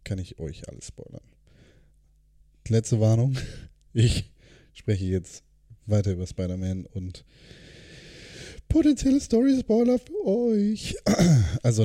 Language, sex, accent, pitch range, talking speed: German, male, German, 90-120 Hz, 95 wpm